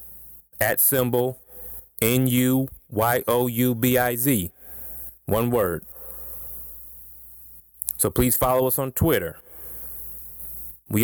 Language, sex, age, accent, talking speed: English, male, 30-49, American, 105 wpm